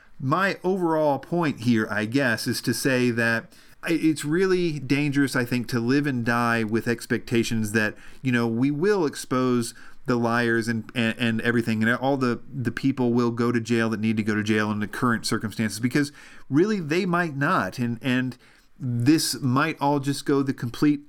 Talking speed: 190 wpm